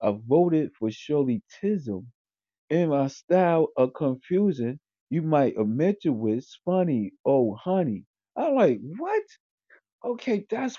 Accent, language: American, English